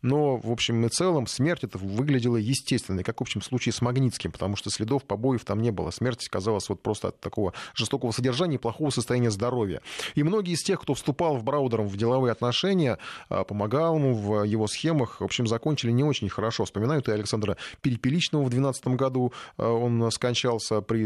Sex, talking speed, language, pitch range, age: male, 185 wpm, Russian, 105-130 Hz, 20-39